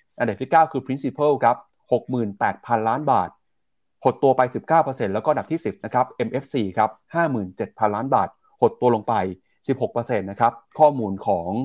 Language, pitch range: Thai, 105-130 Hz